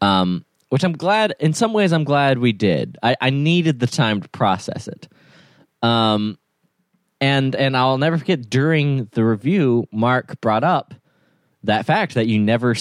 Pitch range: 115-155 Hz